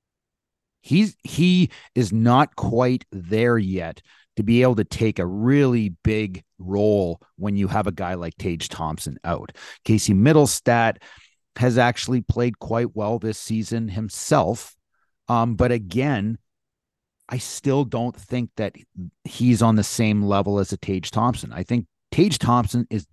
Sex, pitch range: male, 100-125 Hz